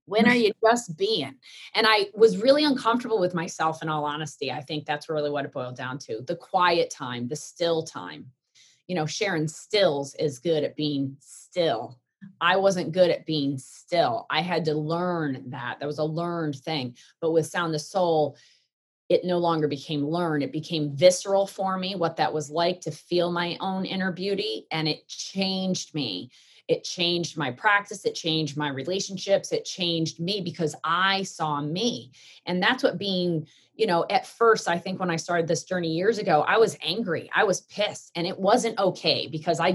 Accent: American